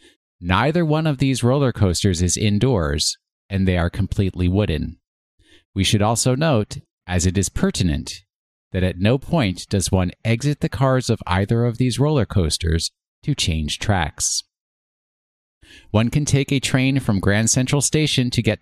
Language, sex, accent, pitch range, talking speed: English, male, American, 90-125 Hz, 160 wpm